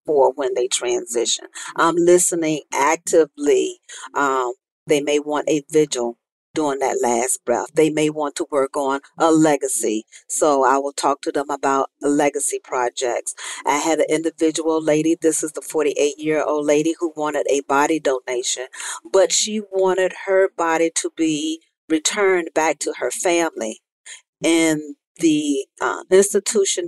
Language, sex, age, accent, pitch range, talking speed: English, female, 40-59, American, 140-185 Hz, 145 wpm